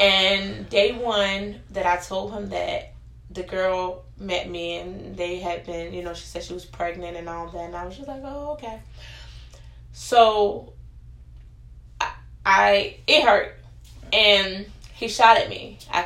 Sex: female